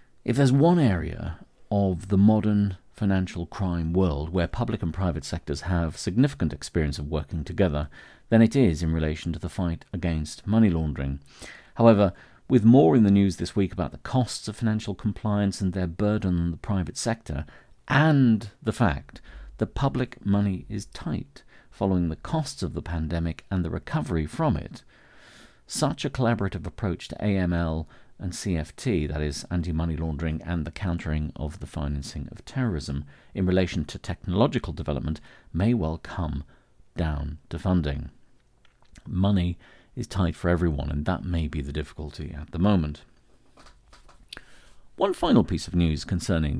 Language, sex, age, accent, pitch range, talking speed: English, male, 50-69, British, 80-105 Hz, 160 wpm